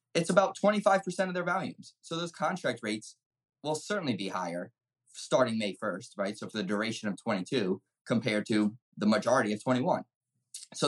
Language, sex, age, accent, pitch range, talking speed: English, male, 20-39, American, 110-150 Hz, 170 wpm